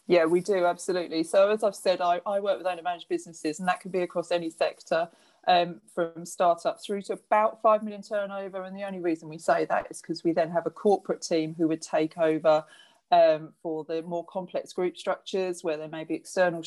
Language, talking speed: English, 225 wpm